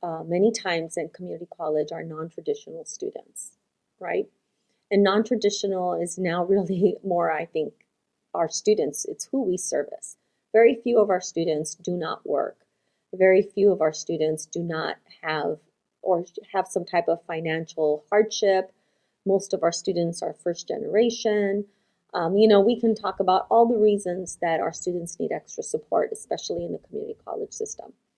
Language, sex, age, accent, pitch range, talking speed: English, female, 30-49, American, 175-220 Hz, 160 wpm